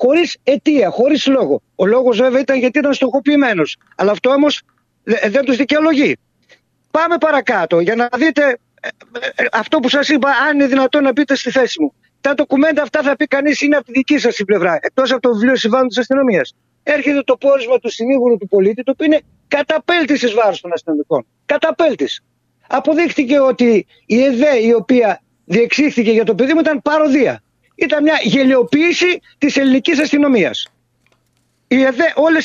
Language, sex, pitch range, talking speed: Greek, male, 220-285 Hz, 160 wpm